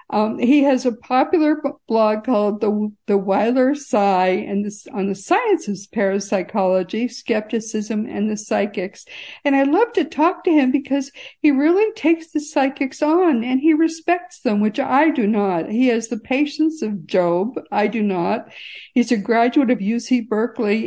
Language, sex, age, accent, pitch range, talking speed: English, female, 60-79, American, 205-275 Hz, 165 wpm